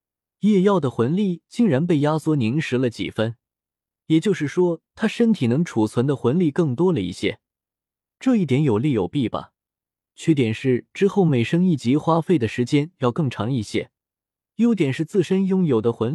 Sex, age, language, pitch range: male, 20-39, Chinese, 110-170 Hz